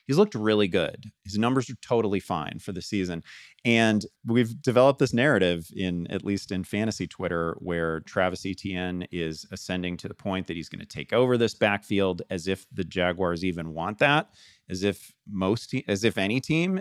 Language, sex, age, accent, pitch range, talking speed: English, male, 30-49, American, 85-115 Hz, 190 wpm